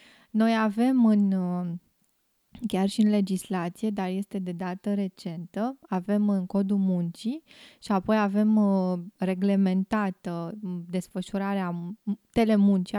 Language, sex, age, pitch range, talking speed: Romanian, female, 20-39, 185-220 Hz, 100 wpm